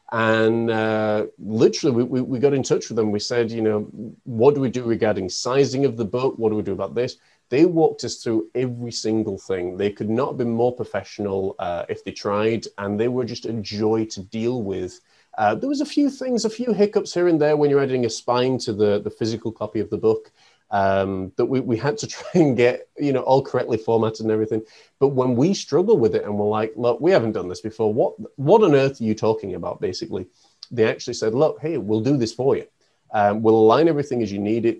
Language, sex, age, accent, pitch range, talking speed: English, male, 30-49, British, 105-130 Hz, 240 wpm